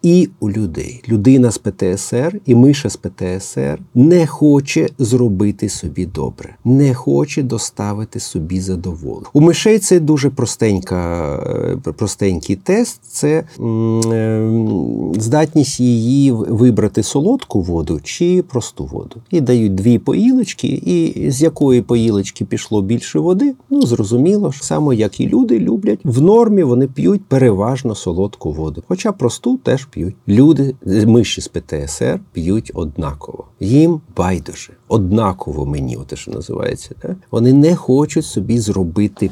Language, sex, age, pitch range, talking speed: Ukrainian, male, 50-69, 100-140 Hz, 130 wpm